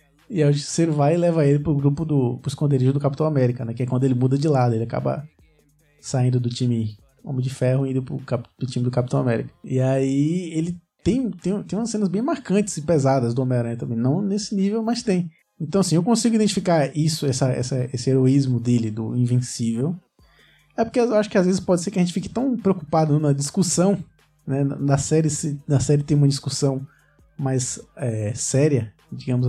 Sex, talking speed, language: male, 195 wpm, Portuguese